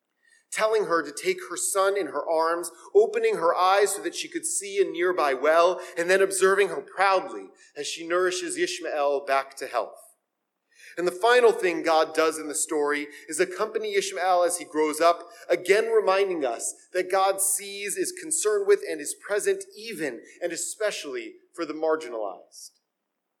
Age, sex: 30-49, male